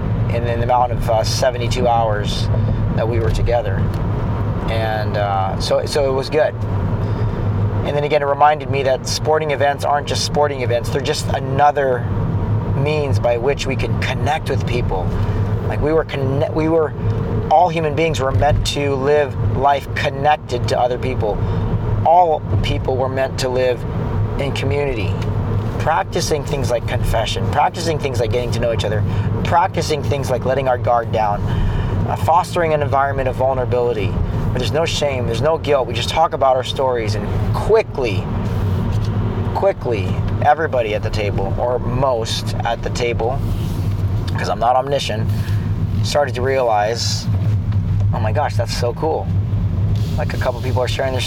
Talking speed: 160 wpm